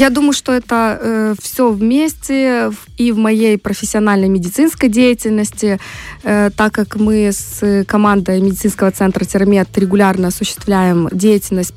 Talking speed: 125 wpm